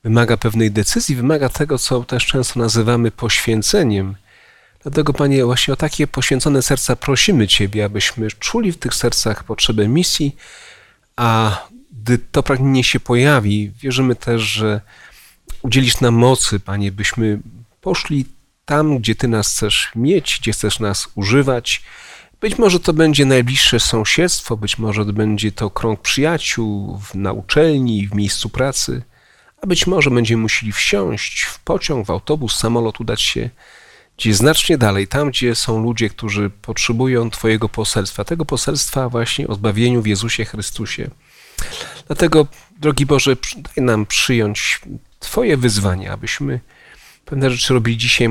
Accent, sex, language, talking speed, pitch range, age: native, male, Polish, 140 wpm, 110-140 Hz, 40-59